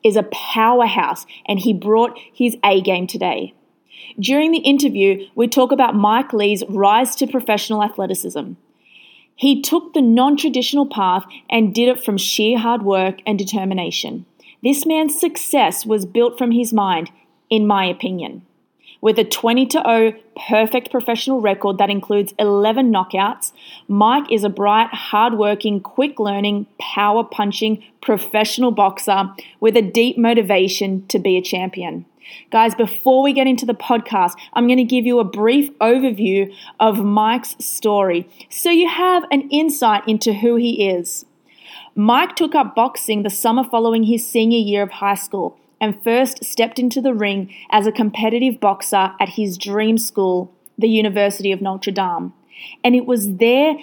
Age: 30-49